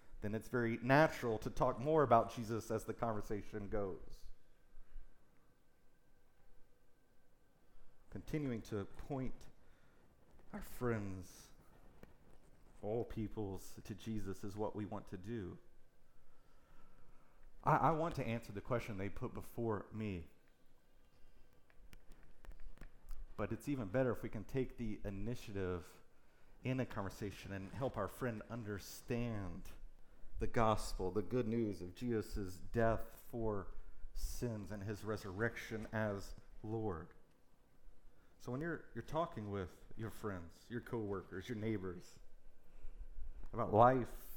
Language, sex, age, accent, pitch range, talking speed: English, male, 40-59, American, 95-120 Hz, 115 wpm